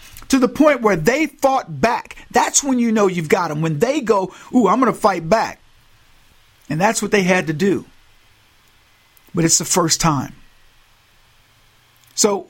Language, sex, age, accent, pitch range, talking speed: English, male, 50-69, American, 170-260 Hz, 170 wpm